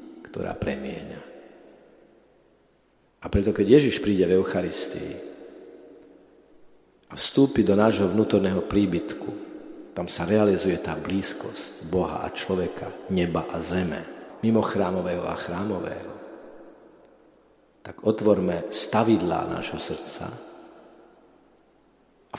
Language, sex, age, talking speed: Slovak, male, 50-69, 95 wpm